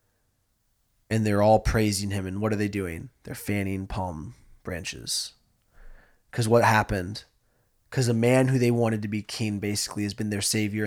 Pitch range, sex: 105-130 Hz, male